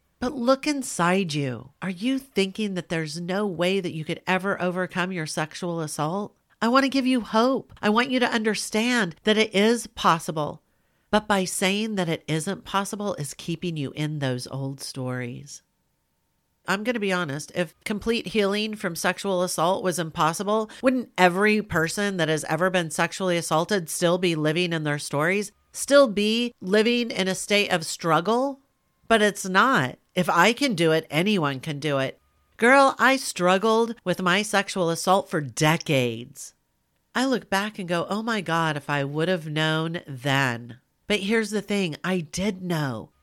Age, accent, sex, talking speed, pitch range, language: 40-59, American, female, 175 wpm, 155-205 Hz, English